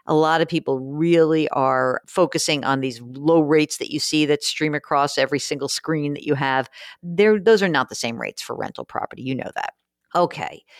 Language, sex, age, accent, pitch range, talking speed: English, female, 50-69, American, 135-180 Hz, 200 wpm